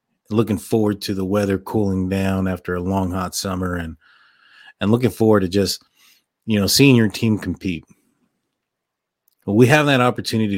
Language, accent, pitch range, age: English, American, 95-110 Hz, 30-49